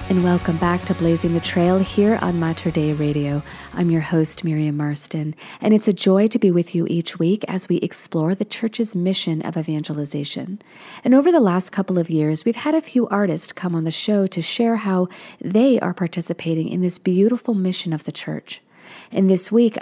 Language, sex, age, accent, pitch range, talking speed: English, female, 40-59, American, 165-205 Hz, 205 wpm